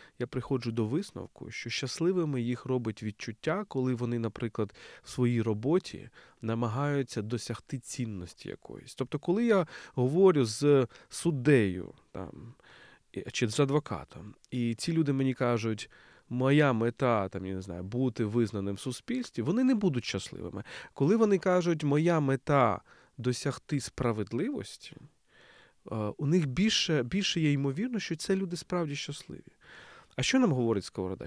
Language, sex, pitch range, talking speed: Ukrainian, male, 115-165 Hz, 135 wpm